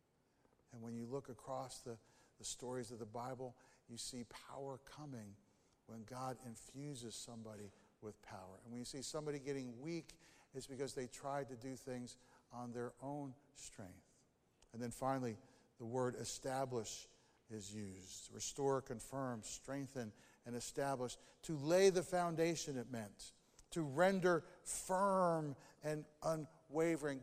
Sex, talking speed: male, 140 wpm